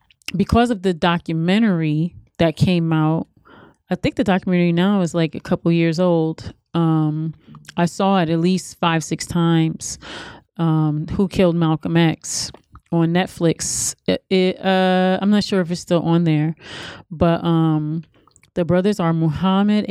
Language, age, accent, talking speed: English, 30-49, American, 155 wpm